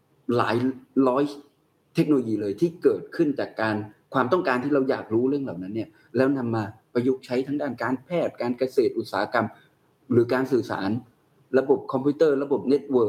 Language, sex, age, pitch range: Thai, male, 20-39, 115-150 Hz